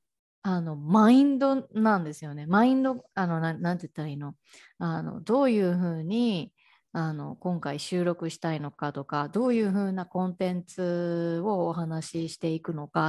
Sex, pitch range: female, 160-205 Hz